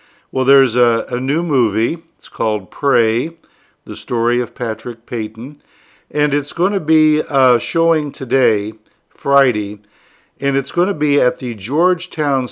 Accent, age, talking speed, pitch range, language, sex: American, 50-69, 150 wpm, 115-145 Hz, English, male